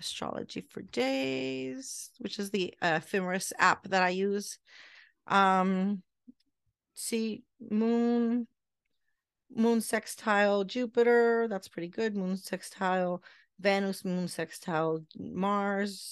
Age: 30-49